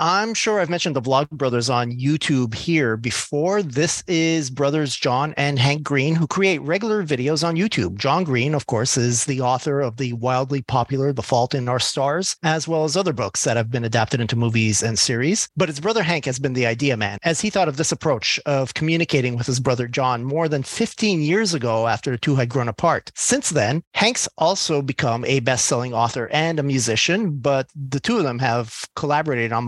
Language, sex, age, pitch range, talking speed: English, male, 40-59, 130-160 Hz, 210 wpm